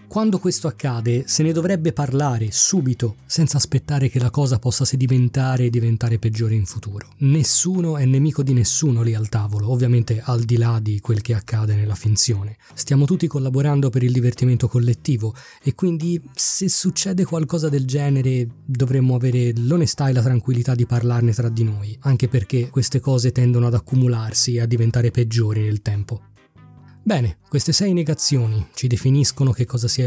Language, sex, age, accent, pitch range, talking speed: Italian, male, 20-39, native, 120-155 Hz, 170 wpm